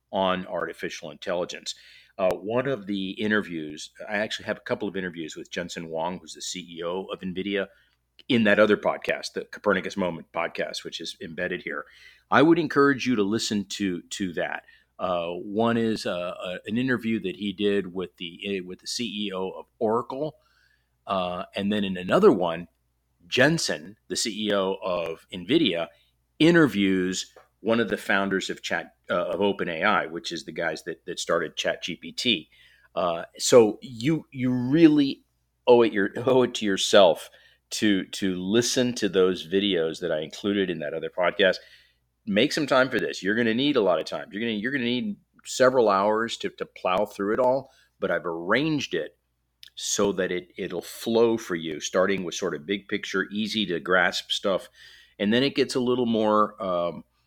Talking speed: 180 wpm